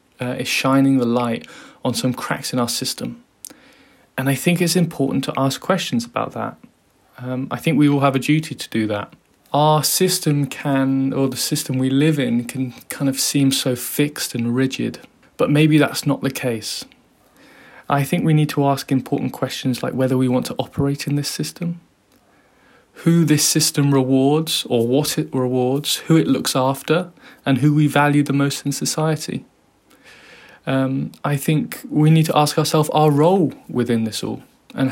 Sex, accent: male, British